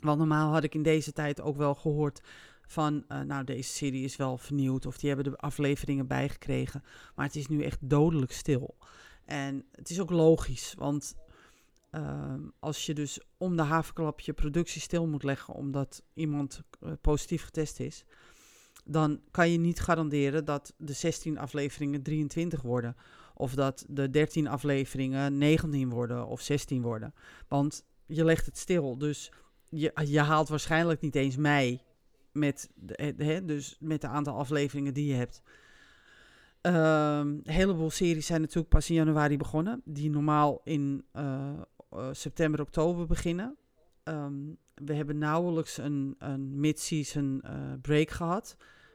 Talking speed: 150 wpm